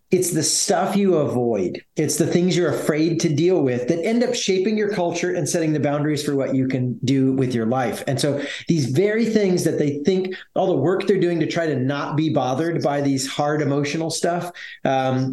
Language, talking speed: English, 220 wpm